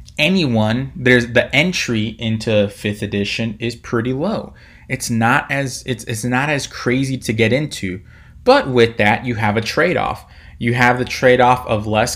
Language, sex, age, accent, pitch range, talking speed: English, male, 20-39, American, 105-125 Hz, 170 wpm